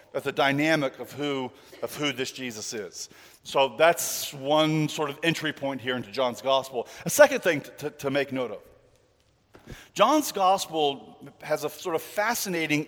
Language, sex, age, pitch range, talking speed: English, male, 40-59, 135-175 Hz, 170 wpm